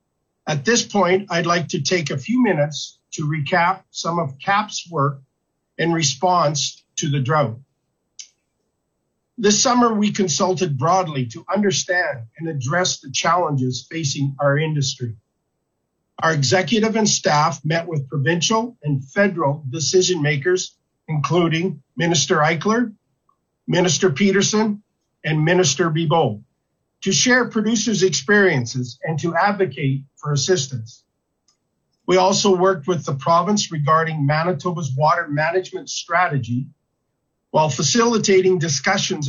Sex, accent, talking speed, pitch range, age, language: male, American, 115 wpm, 145-190 Hz, 50-69, English